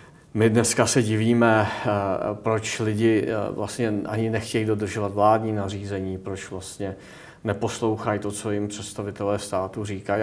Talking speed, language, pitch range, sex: 125 wpm, Czech, 105-115 Hz, male